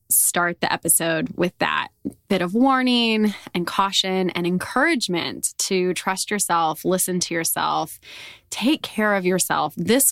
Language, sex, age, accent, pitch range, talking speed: English, female, 20-39, American, 175-235 Hz, 135 wpm